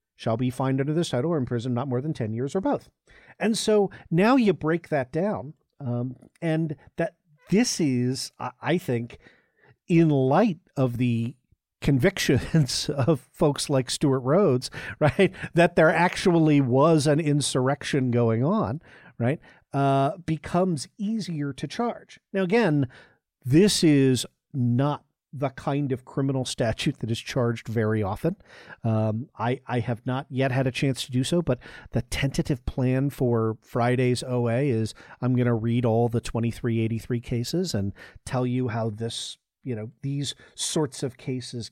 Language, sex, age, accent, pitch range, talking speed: English, male, 50-69, American, 120-160 Hz, 155 wpm